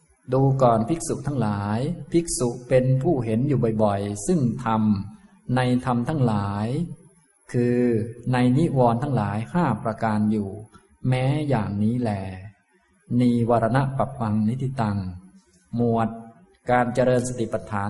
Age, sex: 20-39, male